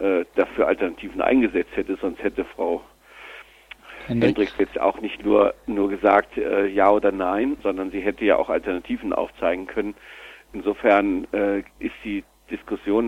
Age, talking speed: 50-69, 135 wpm